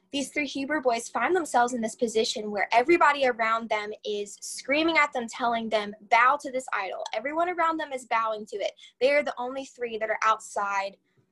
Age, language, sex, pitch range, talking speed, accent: 10-29, English, female, 215-270 Hz, 200 wpm, American